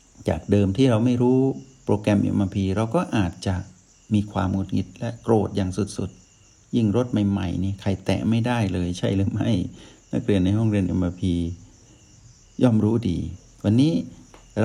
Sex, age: male, 60-79